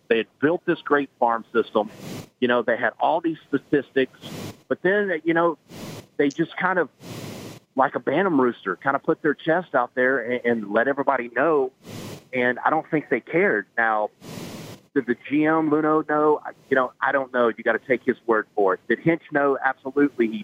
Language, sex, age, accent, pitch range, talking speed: English, male, 40-59, American, 125-155 Hz, 200 wpm